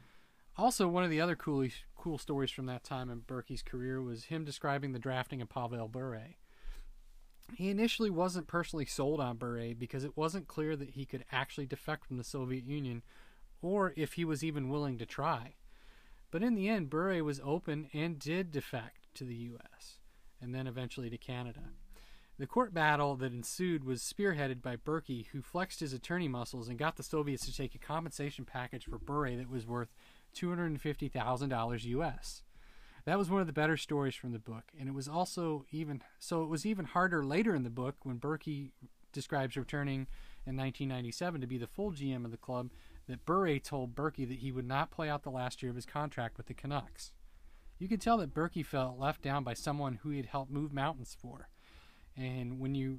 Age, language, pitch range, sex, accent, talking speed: 30-49, English, 125-155 Hz, male, American, 200 wpm